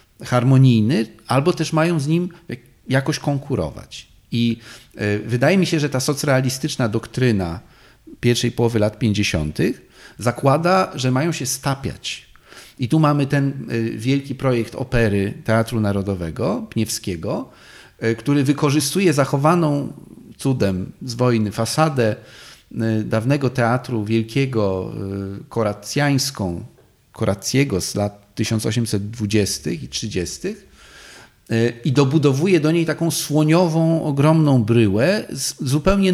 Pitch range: 115-150 Hz